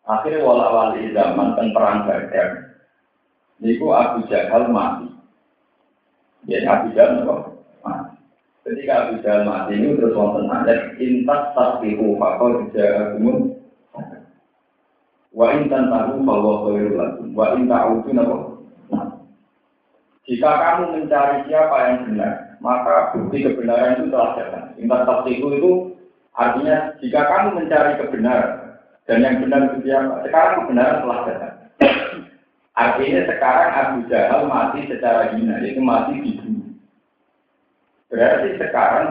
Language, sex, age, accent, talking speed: Indonesian, male, 50-69, native, 105 wpm